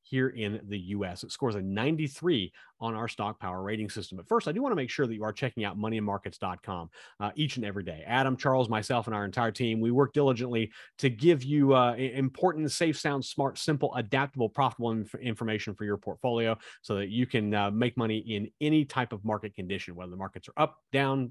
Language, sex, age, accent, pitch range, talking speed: English, male, 30-49, American, 105-135 Hz, 220 wpm